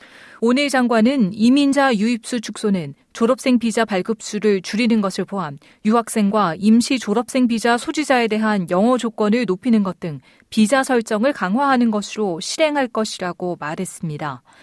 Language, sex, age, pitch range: Korean, female, 40-59, 200-260 Hz